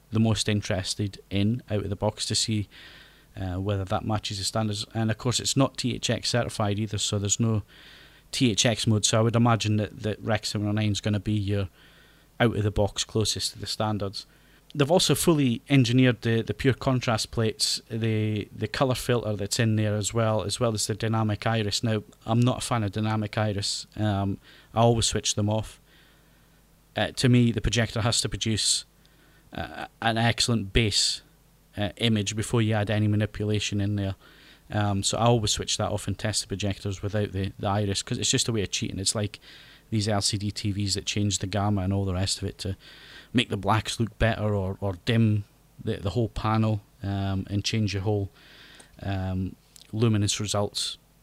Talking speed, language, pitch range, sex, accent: 185 wpm, English, 100-115 Hz, male, British